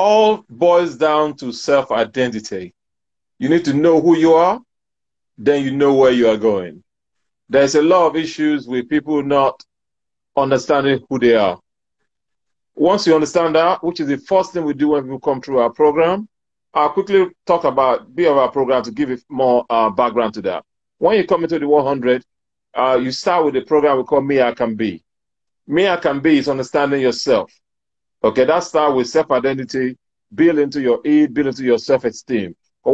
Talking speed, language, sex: 185 wpm, English, male